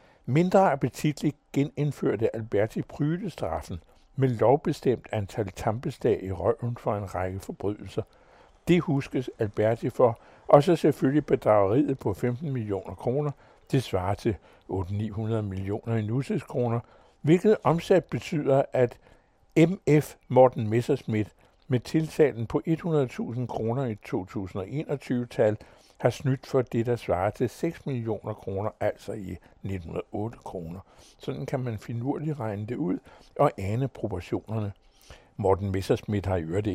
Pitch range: 100-135 Hz